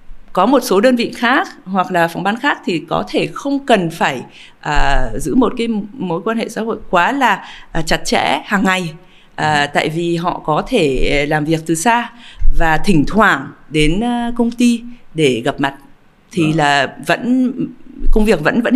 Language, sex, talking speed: Vietnamese, female, 185 wpm